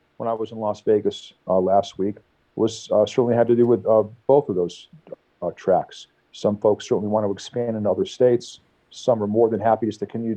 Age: 40-59